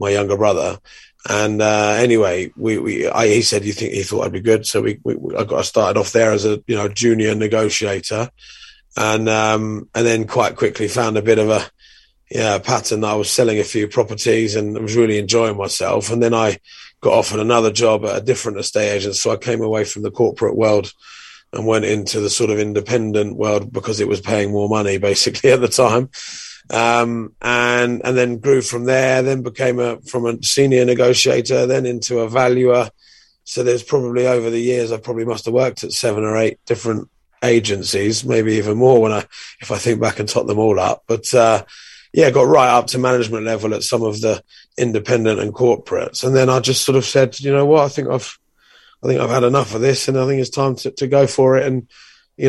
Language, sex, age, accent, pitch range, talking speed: English, male, 30-49, British, 110-125 Hz, 225 wpm